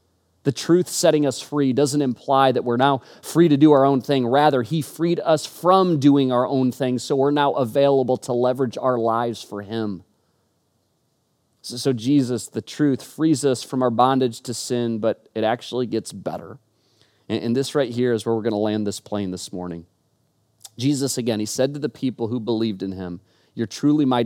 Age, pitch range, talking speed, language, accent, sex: 30-49, 115-140 Hz, 200 wpm, English, American, male